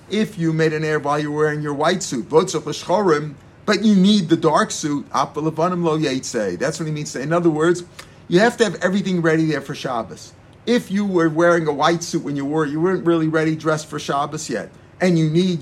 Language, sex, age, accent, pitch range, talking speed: English, male, 50-69, American, 150-175 Hz, 215 wpm